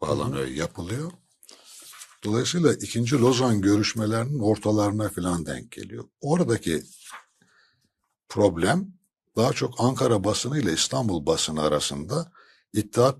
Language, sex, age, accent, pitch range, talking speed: Turkish, male, 60-79, native, 85-130 Hz, 95 wpm